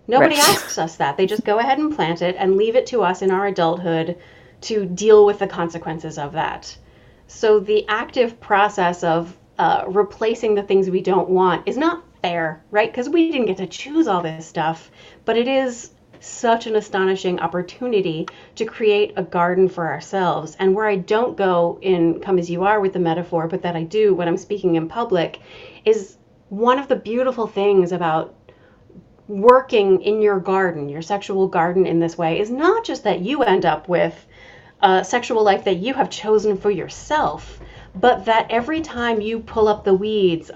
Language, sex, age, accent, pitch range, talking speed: English, female, 30-49, American, 175-220 Hz, 190 wpm